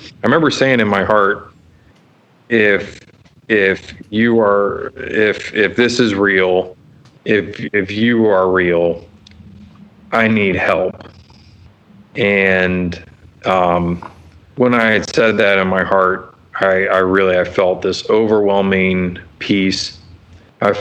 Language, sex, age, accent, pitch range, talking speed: English, male, 30-49, American, 90-100 Hz, 120 wpm